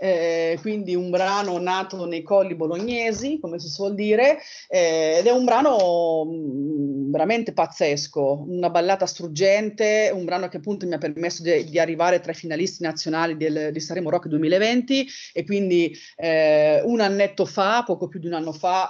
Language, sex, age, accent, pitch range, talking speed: Italian, female, 30-49, native, 155-190 Hz, 170 wpm